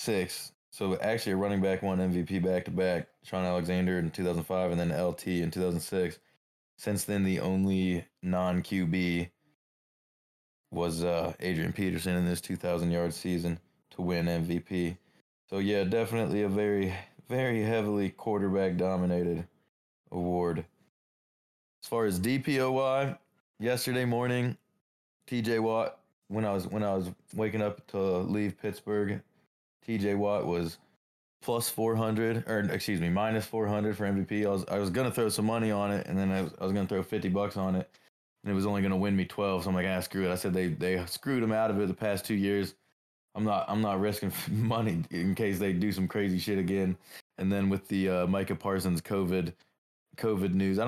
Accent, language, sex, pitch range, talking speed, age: American, English, male, 90-105 Hz, 185 wpm, 20-39